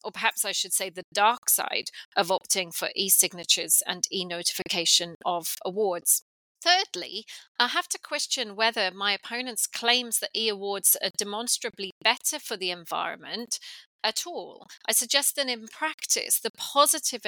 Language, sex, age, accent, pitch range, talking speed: English, female, 40-59, British, 185-235 Hz, 145 wpm